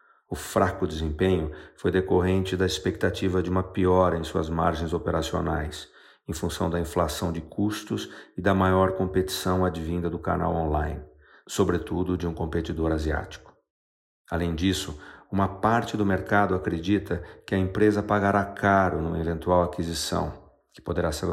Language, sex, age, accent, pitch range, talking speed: Portuguese, male, 50-69, Brazilian, 80-95 Hz, 145 wpm